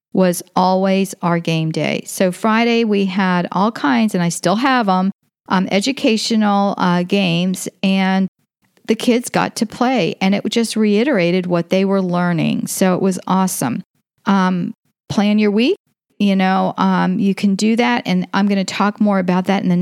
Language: English